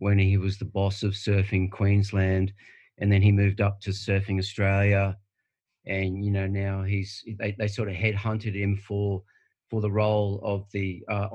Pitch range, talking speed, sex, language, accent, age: 100-120 Hz, 180 wpm, male, English, Australian, 40-59